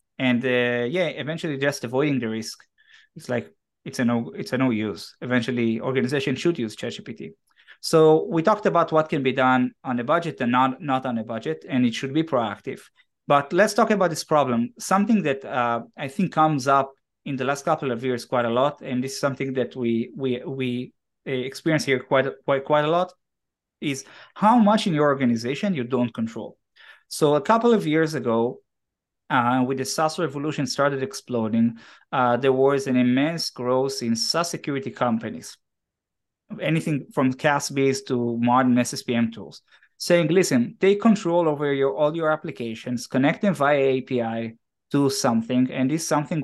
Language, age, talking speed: English, 20-39, 180 wpm